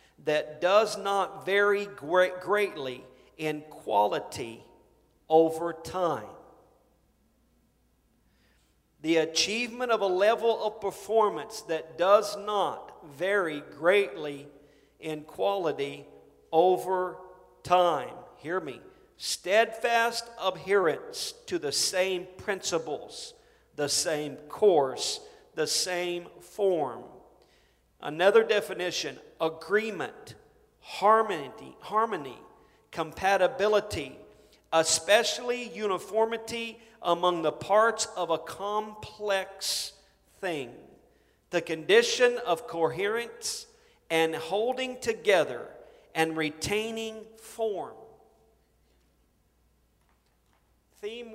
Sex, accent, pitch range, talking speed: male, American, 165-230 Hz, 75 wpm